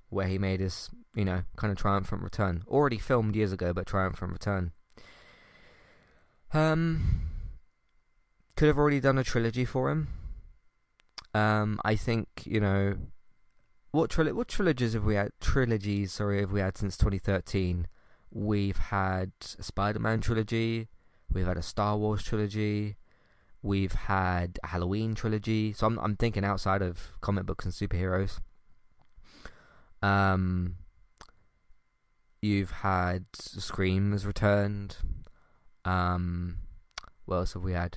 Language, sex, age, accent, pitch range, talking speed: English, male, 20-39, British, 95-110 Hz, 135 wpm